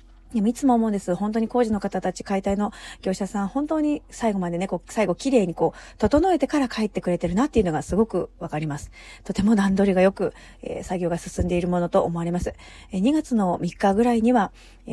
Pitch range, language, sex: 175-220 Hz, Japanese, female